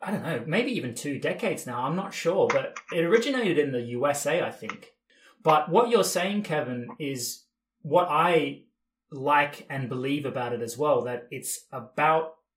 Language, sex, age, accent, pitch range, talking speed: English, male, 30-49, Australian, 120-165 Hz, 175 wpm